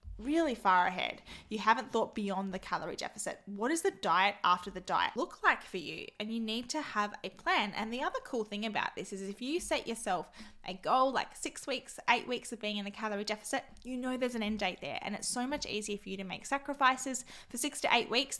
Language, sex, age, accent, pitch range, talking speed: English, female, 10-29, Australian, 210-260 Hz, 245 wpm